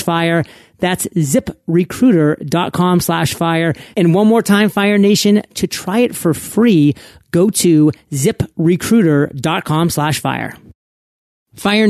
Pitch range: 155-200 Hz